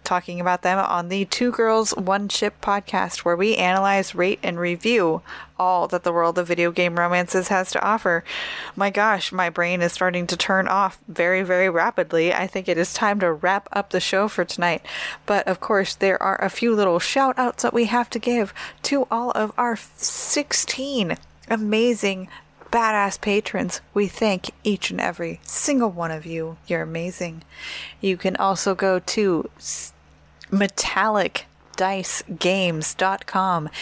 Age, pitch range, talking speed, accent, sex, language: 20-39, 175-205 Hz, 160 wpm, American, female, English